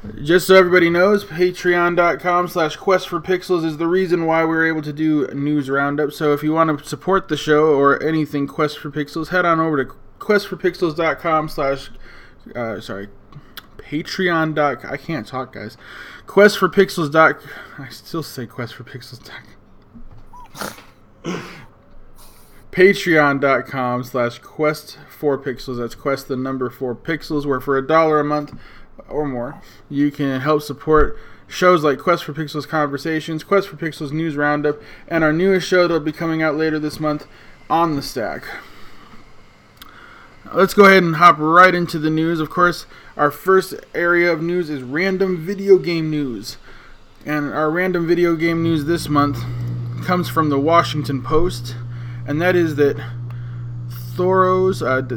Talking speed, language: 160 wpm, English